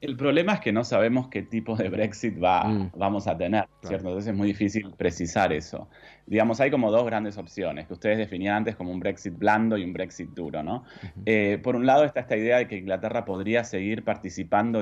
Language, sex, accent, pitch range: Spanish, male, Argentinian, 95-115 Hz